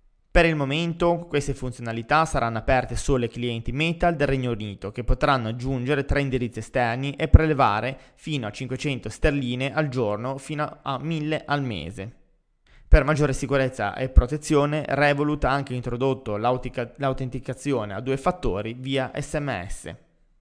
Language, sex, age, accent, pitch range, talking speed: Italian, male, 20-39, native, 120-145 Hz, 140 wpm